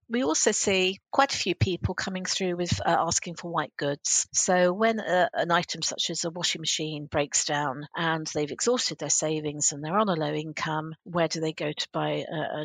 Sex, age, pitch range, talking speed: female, 50-69, 160-180 Hz, 220 wpm